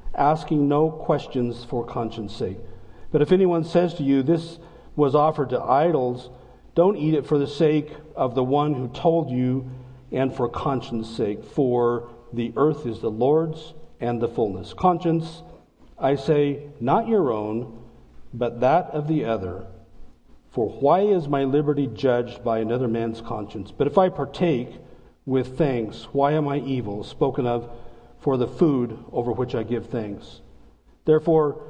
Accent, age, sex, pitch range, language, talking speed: American, 50-69, male, 120-155 Hz, English, 160 wpm